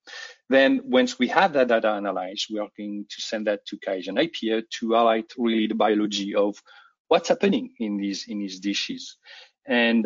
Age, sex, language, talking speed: 40-59, male, English, 175 wpm